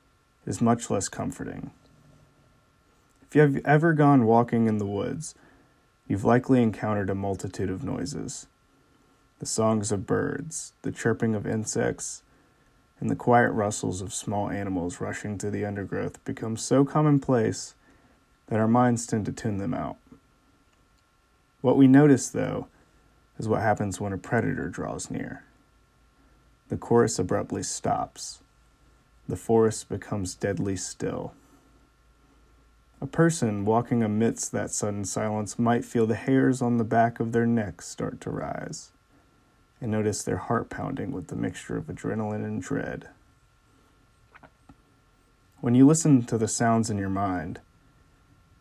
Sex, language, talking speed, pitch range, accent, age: male, English, 140 wpm, 100-125 Hz, American, 30-49